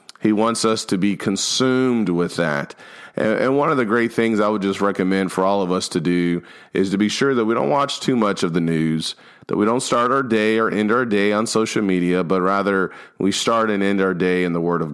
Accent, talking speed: American, 250 wpm